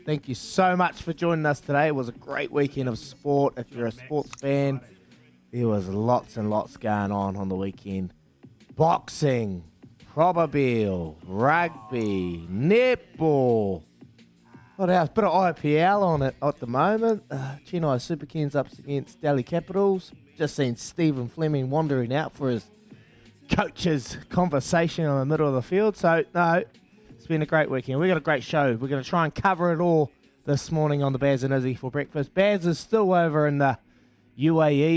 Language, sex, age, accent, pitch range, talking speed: English, male, 20-39, Australian, 110-155 Hz, 175 wpm